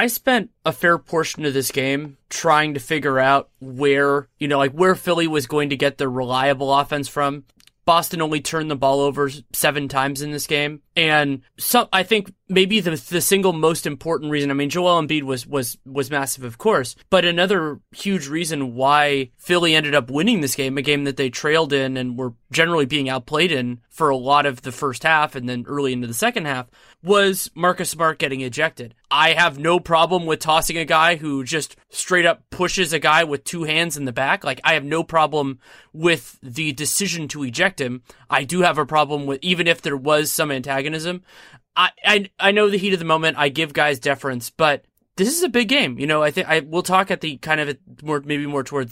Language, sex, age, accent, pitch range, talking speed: English, male, 30-49, American, 140-175 Hz, 220 wpm